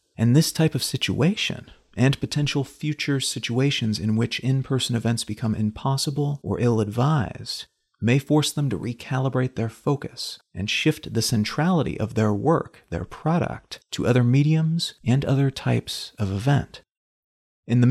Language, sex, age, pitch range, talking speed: English, male, 40-59, 110-140 Hz, 145 wpm